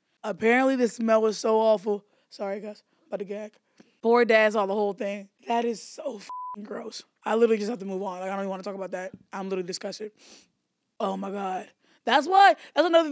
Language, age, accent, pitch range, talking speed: English, 20-39, American, 200-235 Hz, 215 wpm